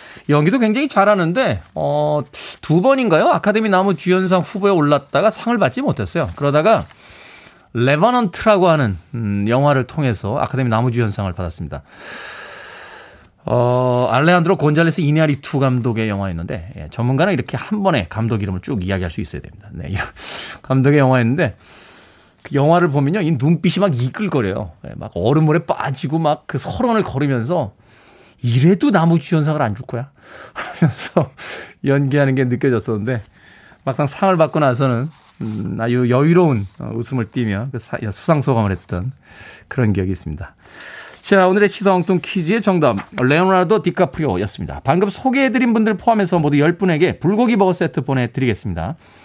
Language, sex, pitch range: Korean, male, 120-180 Hz